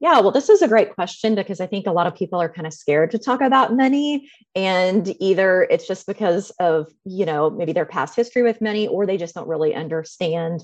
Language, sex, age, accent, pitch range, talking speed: English, female, 30-49, American, 170-230 Hz, 235 wpm